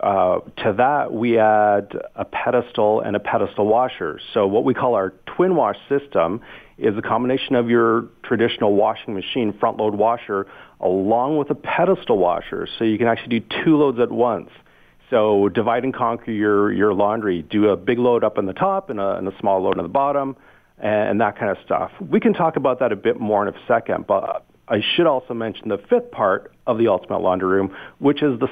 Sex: male